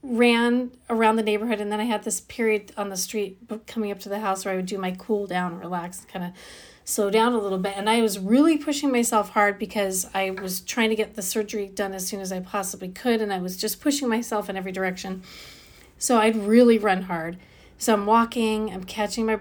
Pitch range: 195-225 Hz